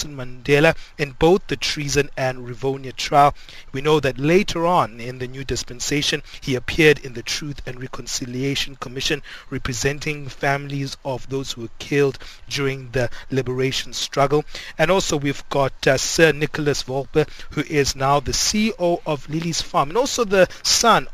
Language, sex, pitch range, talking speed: English, male, 130-155 Hz, 160 wpm